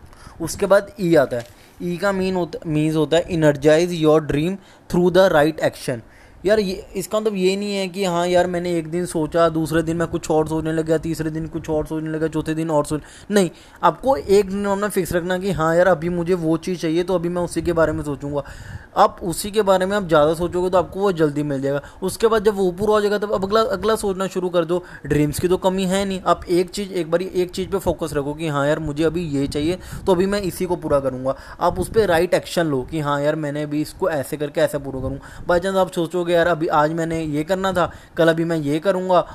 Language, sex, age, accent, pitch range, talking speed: Hindi, male, 20-39, native, 150-185 Hz, 250 wpm